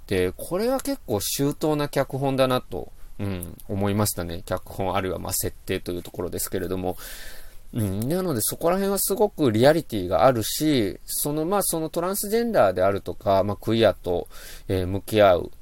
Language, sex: Japanese, male